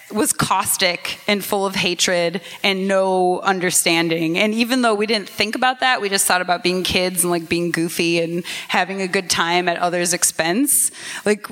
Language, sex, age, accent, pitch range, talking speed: English, female, 20-39, American, 185-255 Hz, 190 wpm